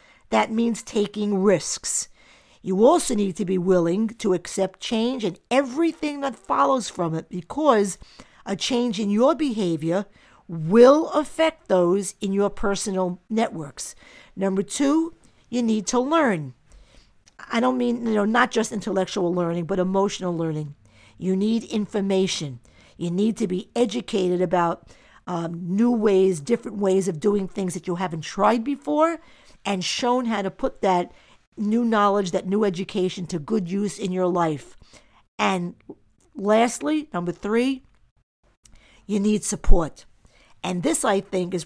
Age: 50-69